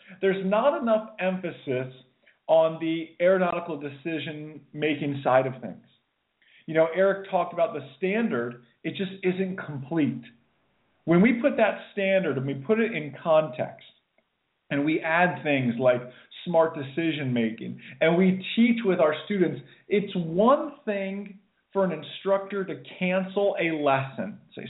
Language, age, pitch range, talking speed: English, 40-59, 140-190 Hz, 140 wpm